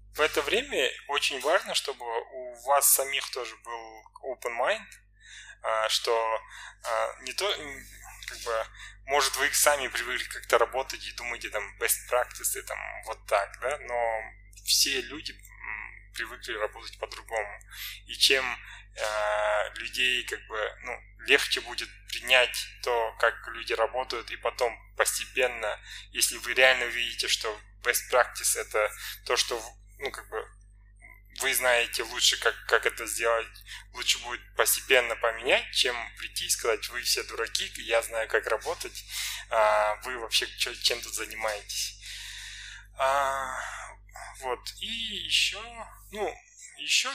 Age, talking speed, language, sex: 10-29, 125 wpm, Russian, male